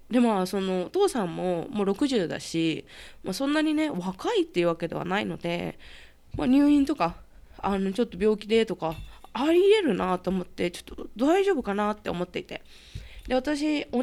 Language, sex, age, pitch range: Japanese, female, 20-39, 175-260 Hz